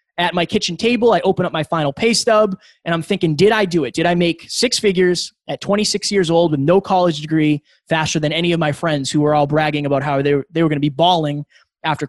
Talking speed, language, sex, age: 260 wpm, English, male, 20-39